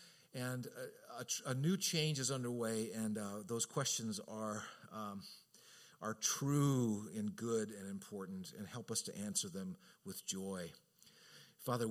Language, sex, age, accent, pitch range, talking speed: English, male, 50-69, American, 105-155 Hz, 150 wpm